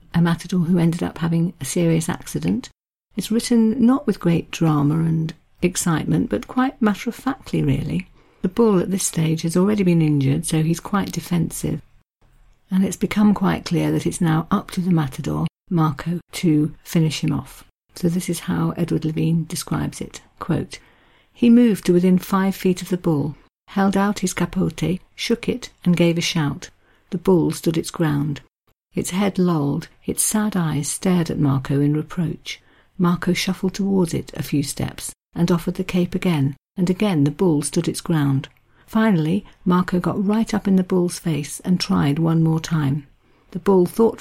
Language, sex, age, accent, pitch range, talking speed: English, female, 50-69, British, 160-190 Hz, 175 wpm